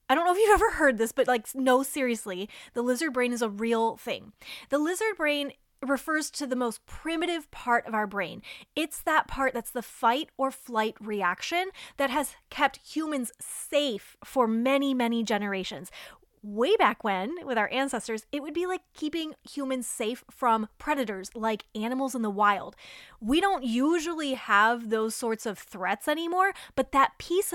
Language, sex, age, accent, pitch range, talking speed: English, female, 20-39, American, 225-290 Hz, 175 wpm